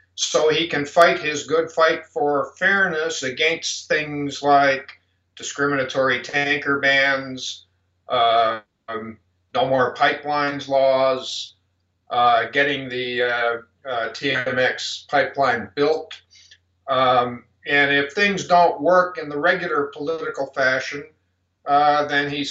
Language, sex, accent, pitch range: English, male, American, 125-155 Hz